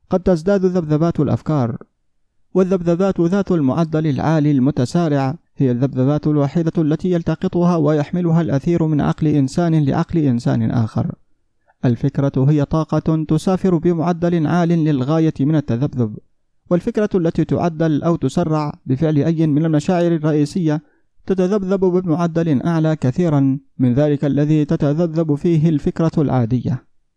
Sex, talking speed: male, 115 wpm